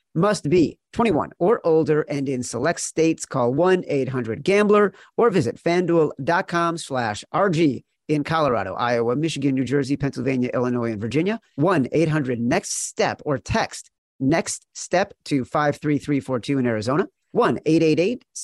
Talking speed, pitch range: 135 wpm, 135-170 Hz